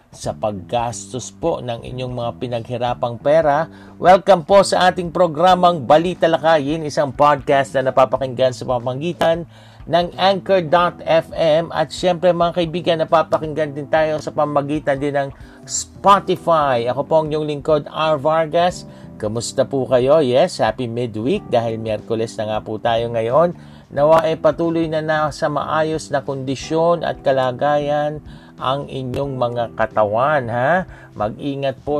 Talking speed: 135 wpm